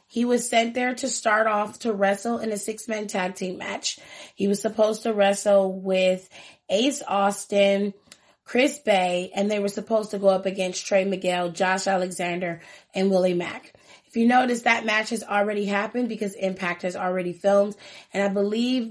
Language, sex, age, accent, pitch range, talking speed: English, female, 20-39, American, 185-215 Hz, 180 wpm